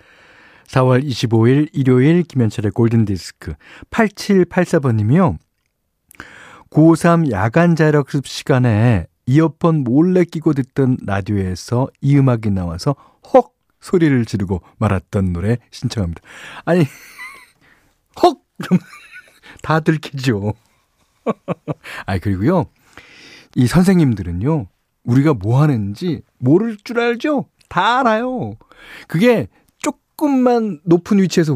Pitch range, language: 115-165 Hz, Korean